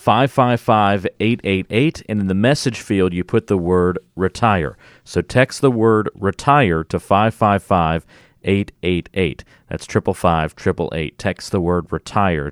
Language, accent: English, American